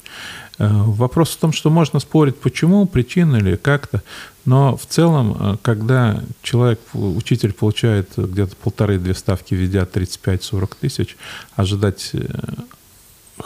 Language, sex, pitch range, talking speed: Russian, male, 95-120 Hz, 105 wpm